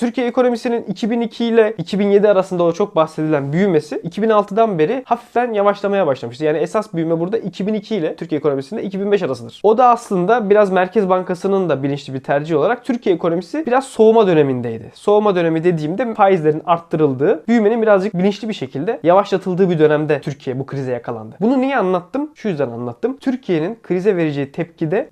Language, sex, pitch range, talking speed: Turkish, male, 150-210 Hz, 160 wpm